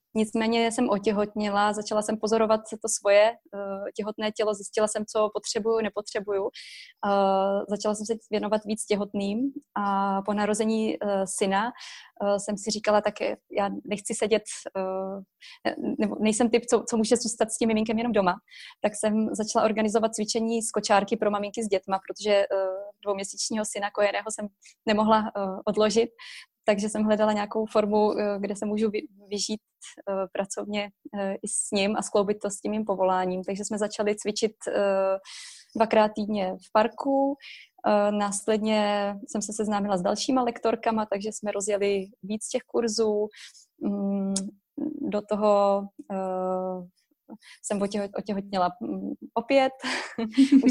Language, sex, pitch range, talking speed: Czech, female, 200-225 Hz, 130 wpm